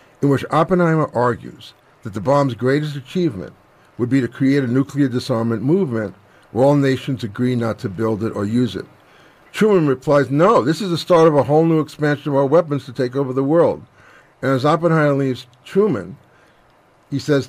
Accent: American